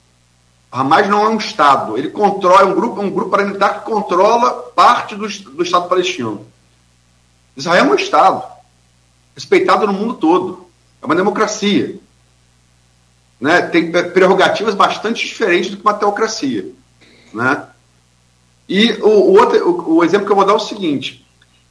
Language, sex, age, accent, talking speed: Portuguese, male, 50-69, Brazilian, 150 wpm